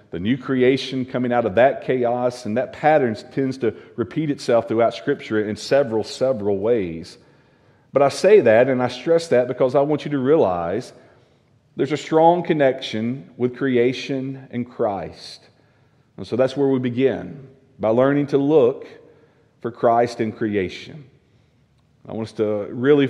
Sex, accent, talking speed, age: male, American, 160 wpm, 40-59